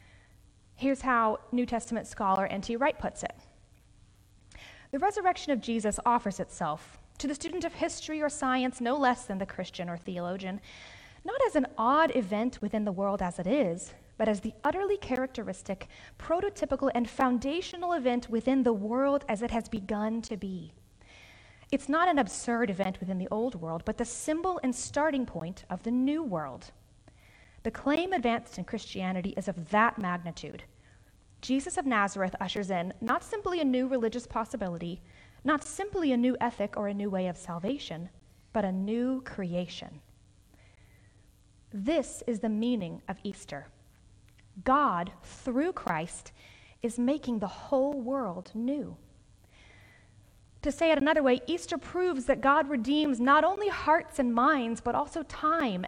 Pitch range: 180-275 Hz